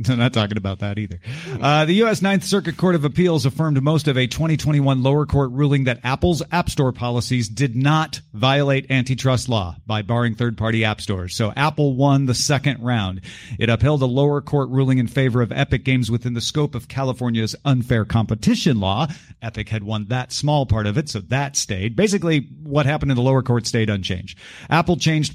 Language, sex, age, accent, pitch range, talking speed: English, male, 40-59, American, 110-140 Hz, 200 wpm